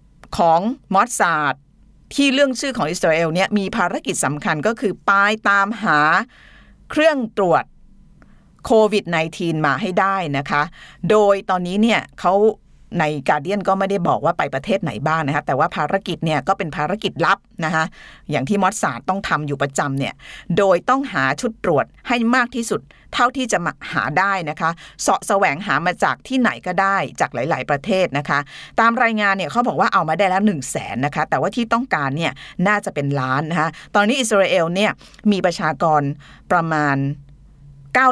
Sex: female